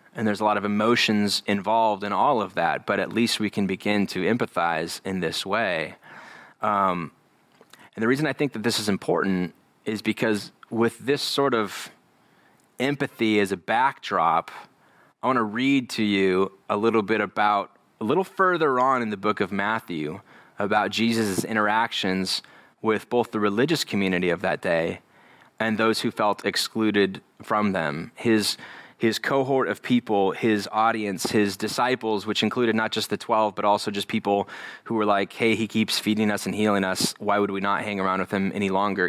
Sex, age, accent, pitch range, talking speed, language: male, 20-39, American, 100-115 Hz, 185 wpm, English